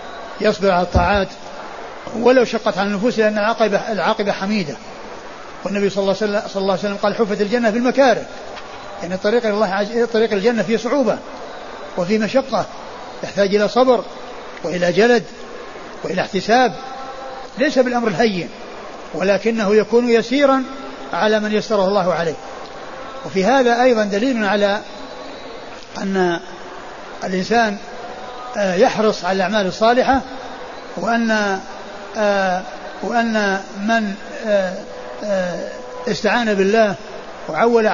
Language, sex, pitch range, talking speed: Arabic, male, 200-235 Hz, 105 wpm